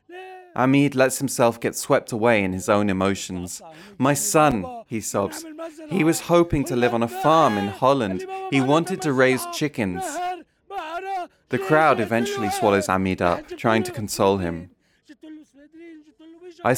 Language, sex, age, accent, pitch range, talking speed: English, male, 20-39, British, 95-140 Hz, 145 wpm